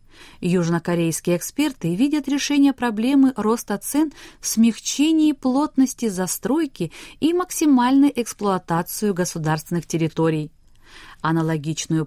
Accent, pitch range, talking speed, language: native, 170-265 Hz, 85 wpm, Russian